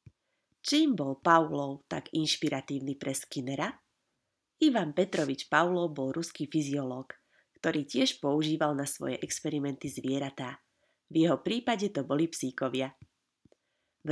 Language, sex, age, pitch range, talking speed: Slovak, female, 20-39, 140-175 Hz, 115 wpm